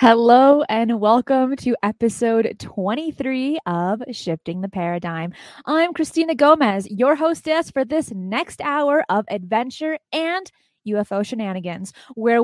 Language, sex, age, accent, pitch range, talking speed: English, female, 20-39, American, 225-295 Hz, 120 wpm